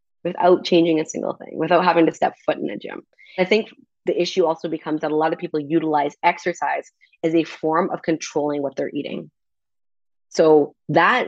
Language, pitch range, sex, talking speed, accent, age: English, 150-180 Hz, female, 190 wpm, American, 20-39